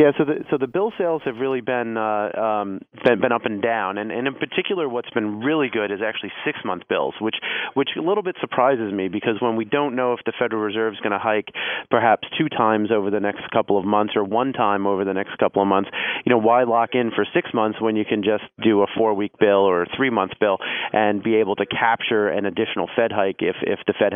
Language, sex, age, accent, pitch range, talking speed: English, male, 30-49, American, 100-125 Hz, 245 wpm